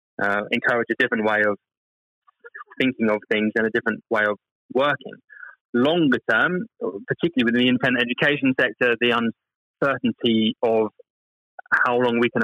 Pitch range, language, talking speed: 115-145 Hz, English, 145 wpm